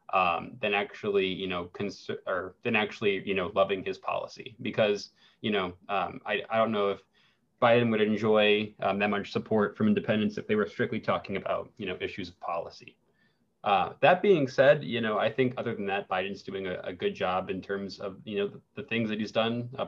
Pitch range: 100-130 Hz